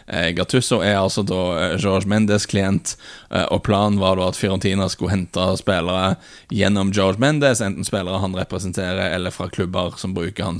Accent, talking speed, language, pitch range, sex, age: Norwegian, 170 wpm, English, 90-110 Hz, male, 10-29